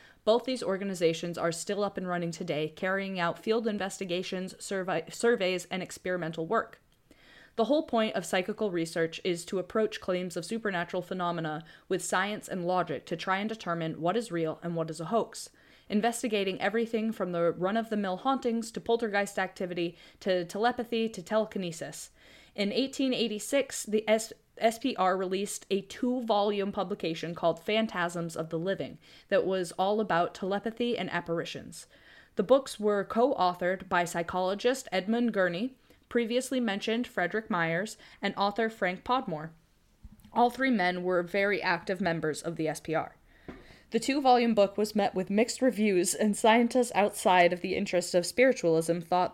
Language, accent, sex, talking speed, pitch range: English, American, female, 150 wpm, 175-225 Hz